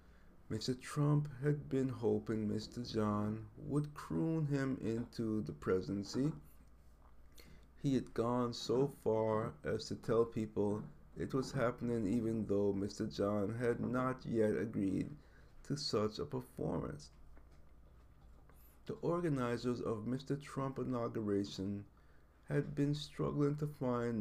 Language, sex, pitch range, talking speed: English, male, 95-130 Hz, 120 wpm